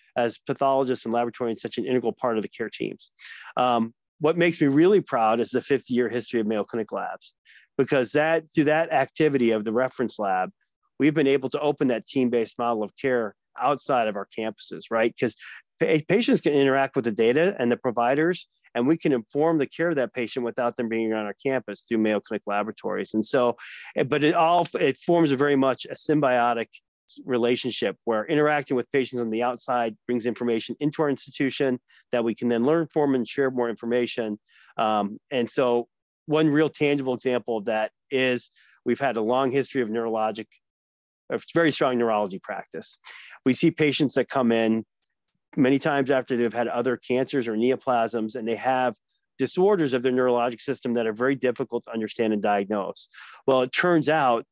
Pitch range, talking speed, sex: 115-140 Hz, 190 wpm, male